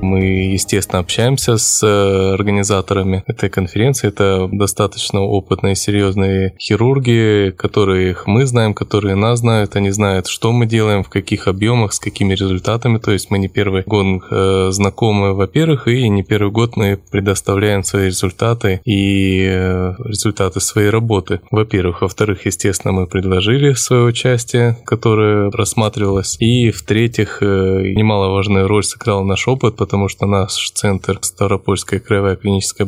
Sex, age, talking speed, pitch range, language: male, 20-39, 135 wpm, 95-110 Hz, Russian